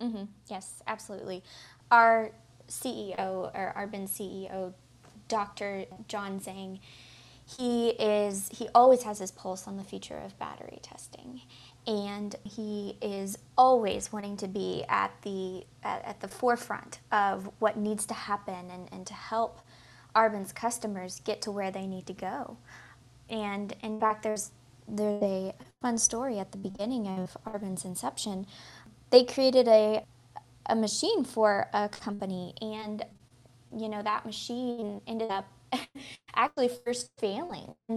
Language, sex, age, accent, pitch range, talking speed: English, female, 20-39, American, 190-225 Hz, 140 wpm